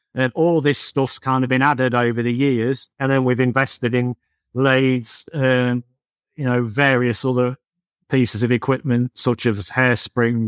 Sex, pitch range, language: male, 115-135 Hz, English